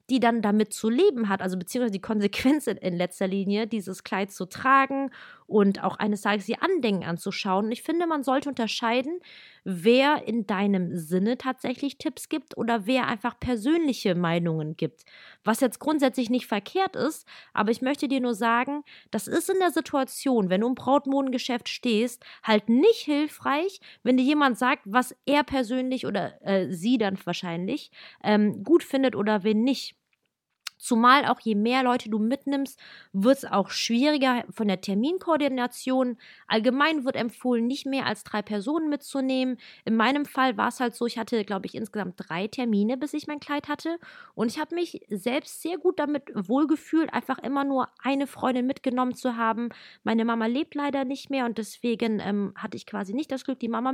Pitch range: 215-275 Hz